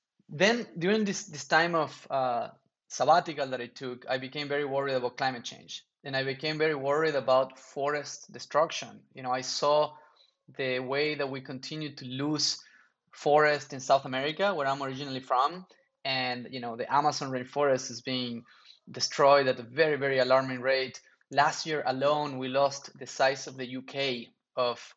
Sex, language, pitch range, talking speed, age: male, English, 130-160 Hz, 170 wpm, 20-39